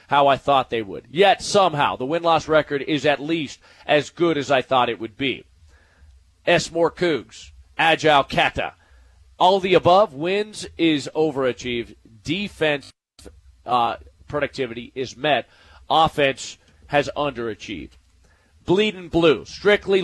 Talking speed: 135 wpm